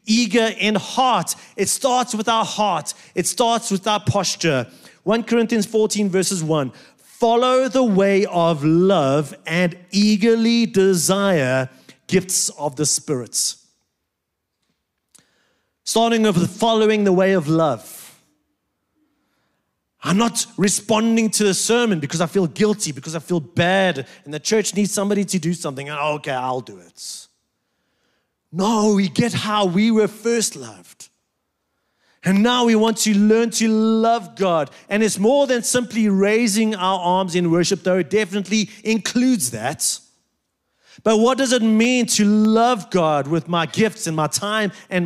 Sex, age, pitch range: male, 30-49, 180-230 Hz